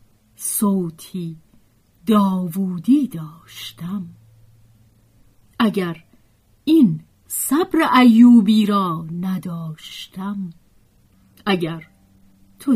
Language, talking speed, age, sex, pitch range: Persian, 50 wpm, 40-59, female, 165-235 Hz